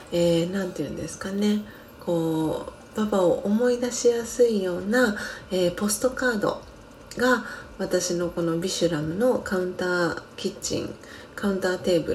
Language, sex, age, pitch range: Japanese, female, 30-49, 170-230 Hz